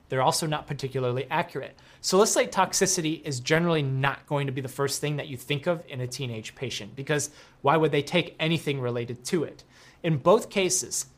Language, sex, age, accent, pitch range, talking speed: English, male, 30-49, American, 130-170 Hz, 195 wpm